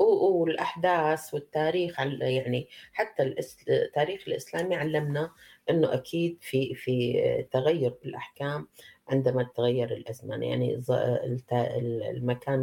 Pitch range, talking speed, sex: 120-140 Hz, 85 wpm, female